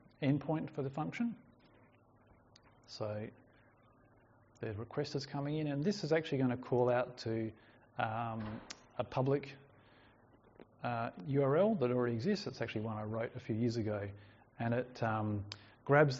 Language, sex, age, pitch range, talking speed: English, male, 30-49, 110-135 Hz, 150 wpm